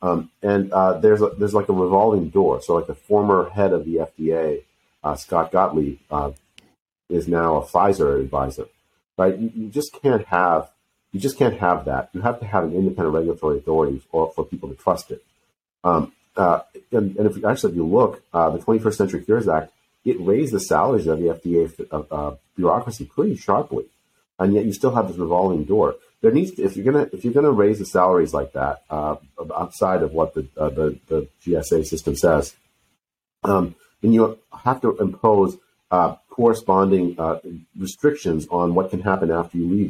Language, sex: English, male